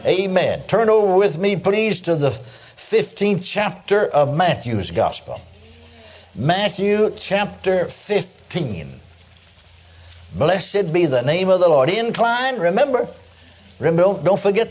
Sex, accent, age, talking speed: male, American, 60-79, 120 wpm